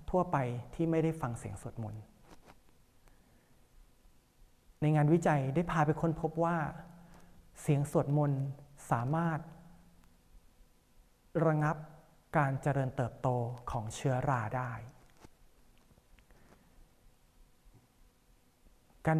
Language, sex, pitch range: Thai, male, 130-160 Hz